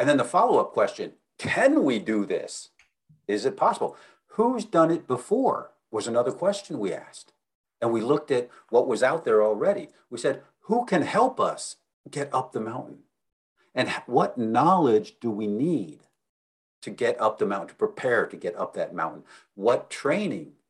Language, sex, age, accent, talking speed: English, male, 50-69, American, 175 wpm